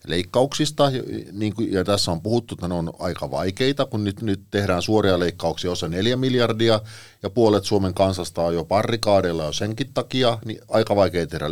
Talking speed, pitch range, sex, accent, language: 165 wpm, 85-110 Hz, male, native, Finnish